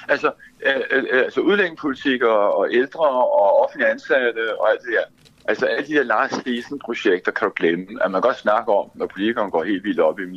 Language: Danish